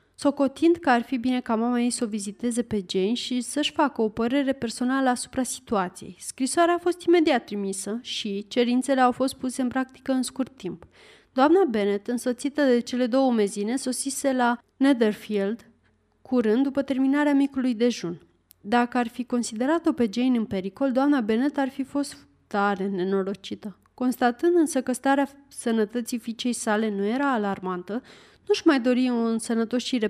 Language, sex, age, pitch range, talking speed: Romanian, female, 30-49, 225-275 Hz, 160 wpm